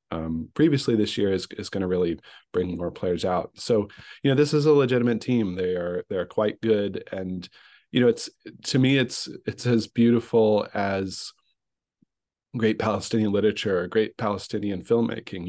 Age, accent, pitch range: 40-59, American, 95-115 Hz